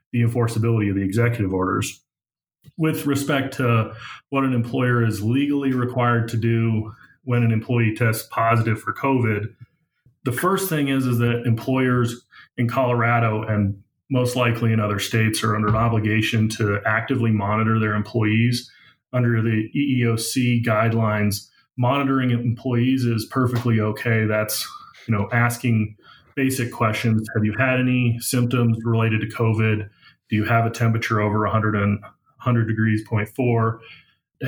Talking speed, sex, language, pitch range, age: 140 wpm, male, English, 110-125 Hz, 30-49